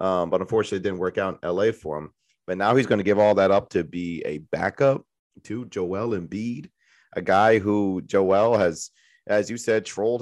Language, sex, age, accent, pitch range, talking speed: English, male, 30-49, American, 90-105 Hz, 210 wpm